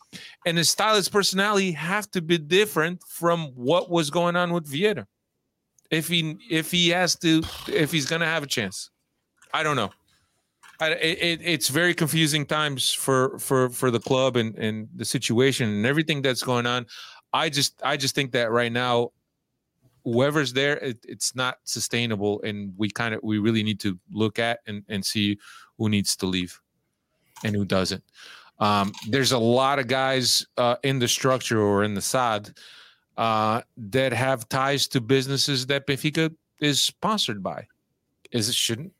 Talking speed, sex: 170 wpm, male